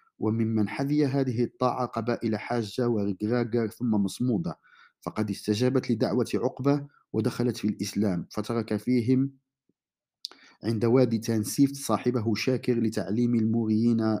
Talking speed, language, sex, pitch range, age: 105 wpm, Arabic, male, 110-125 Hz, 50-69